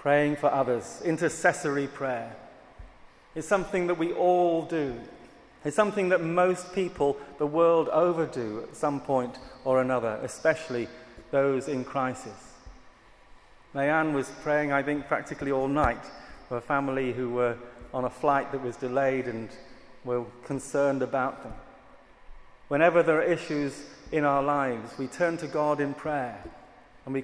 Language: English